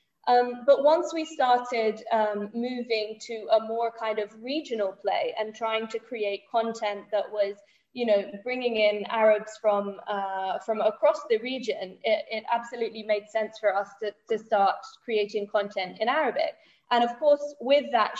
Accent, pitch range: British, 205-260 Hz